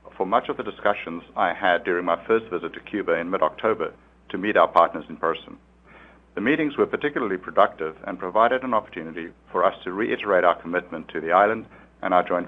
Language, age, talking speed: English, 60-79, 200 wpm